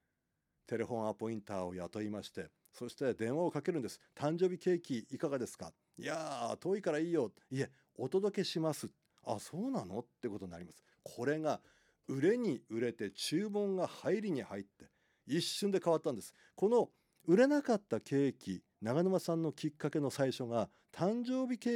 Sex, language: male, Japanese